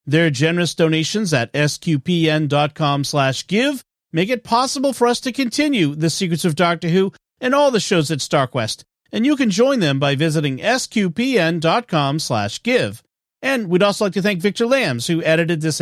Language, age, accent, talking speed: English, 40-59, American, 175 wpm